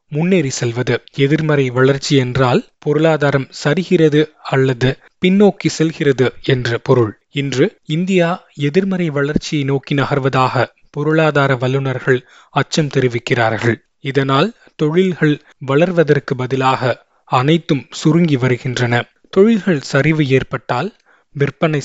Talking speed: 85 wpm